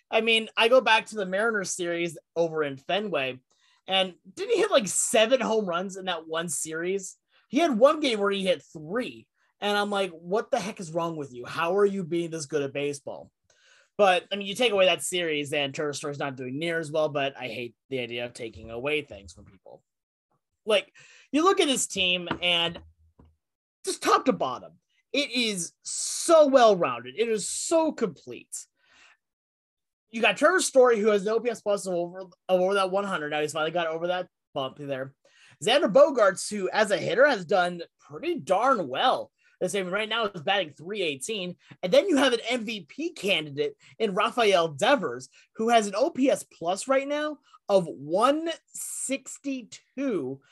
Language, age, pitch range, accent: English, 30-49, 165-260 Hz, American